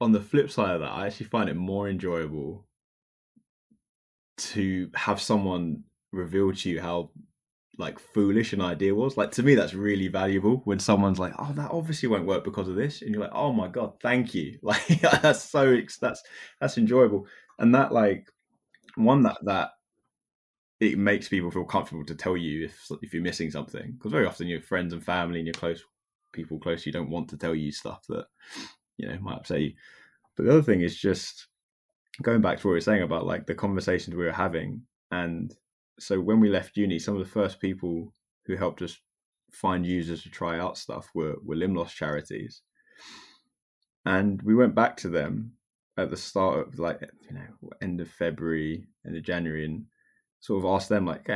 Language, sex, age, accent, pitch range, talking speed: English, male, 20-39, British, 85-110 Hz, 195 wpm